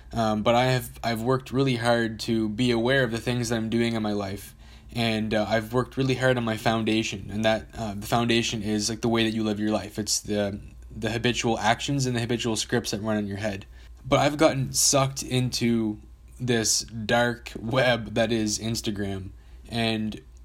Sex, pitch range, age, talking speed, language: male, 105-120 Hz, 10-29, 200 wpm, English